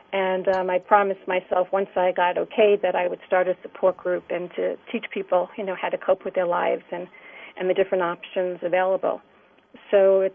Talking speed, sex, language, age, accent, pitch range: 210 wpm, female, English, 40-59, American, 180-205 Hz